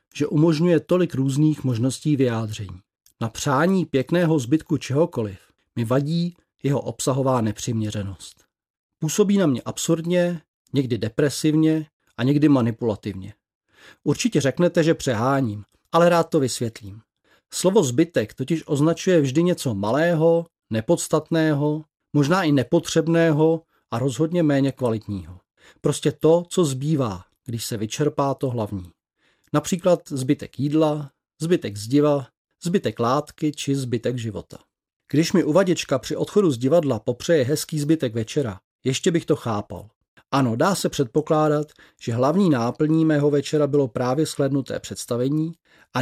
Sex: male